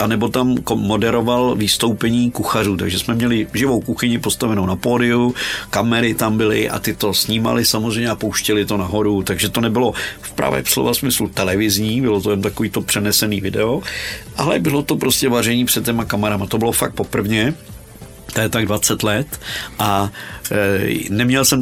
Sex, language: male, Czech